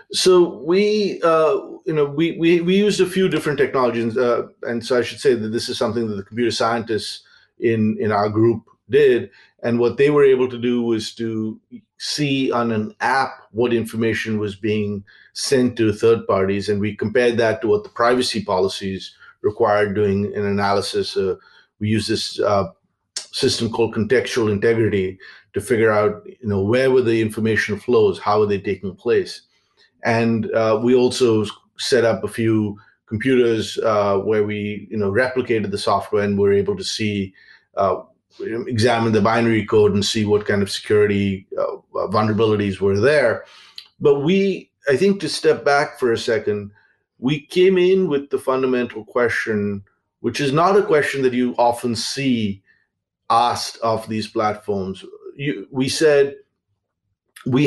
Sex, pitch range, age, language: male, 105-135 Hz, 50-69, English